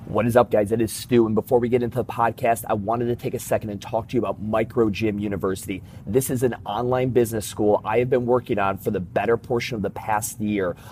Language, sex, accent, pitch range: English, male, American, 120-145 Hz